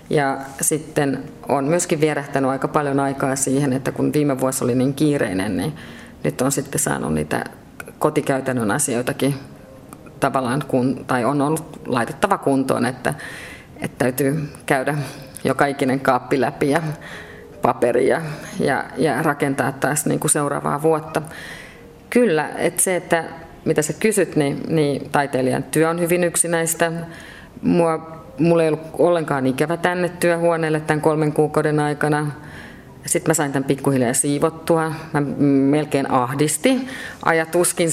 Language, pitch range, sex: Finnish, 140-165 Hz, female